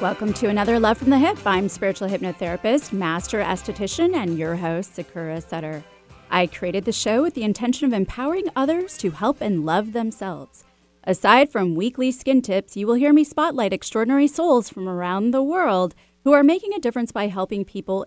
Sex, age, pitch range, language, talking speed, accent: female, 30-49, 175-255 Hz, English, 185 wpm, American